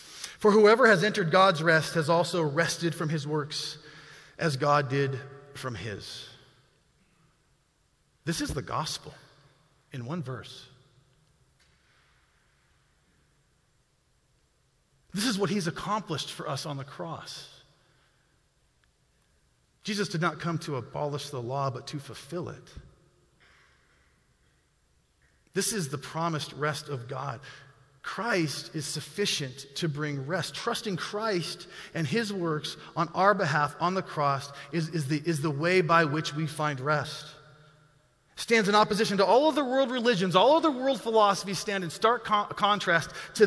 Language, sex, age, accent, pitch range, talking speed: English, male, 40-59, American, 145-215 Hz, 140 wpm